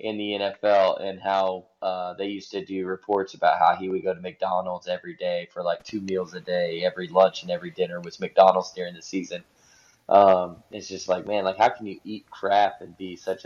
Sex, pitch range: male, 90-100 Hz